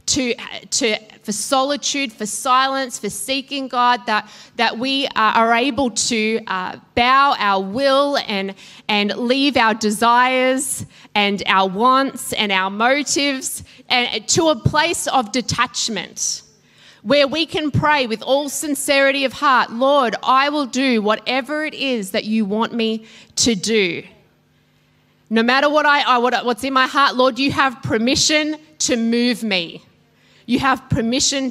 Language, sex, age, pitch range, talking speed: English, female, 20-39, 210-265 Hz, 145 wpm